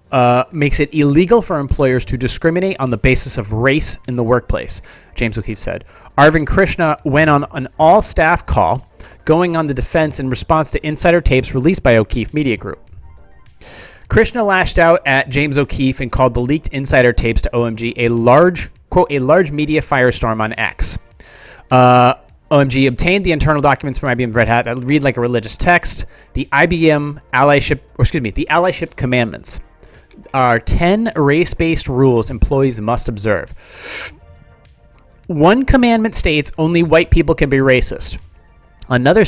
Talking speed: 160 wpm